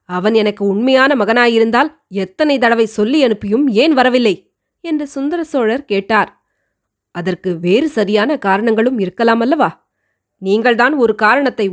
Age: 20-39